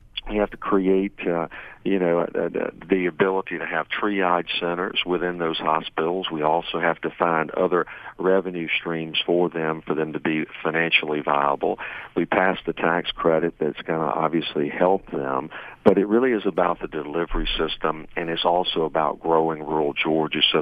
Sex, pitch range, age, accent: male, 80-90 Hz, 50-69, American